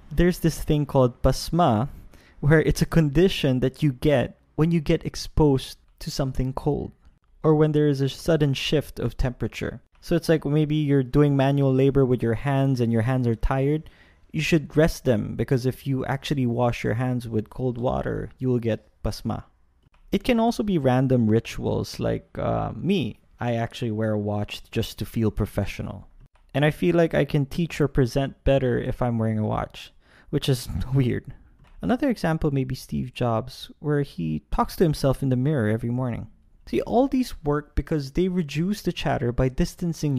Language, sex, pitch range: English, male, 120-160 Hz